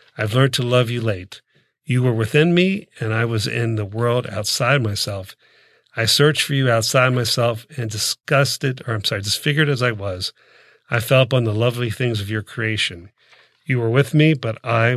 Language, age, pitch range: English, 40-59, 110-130 Hz